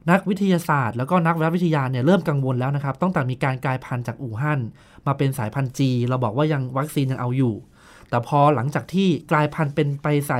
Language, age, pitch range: Thai, 20-39, 135-175 Hz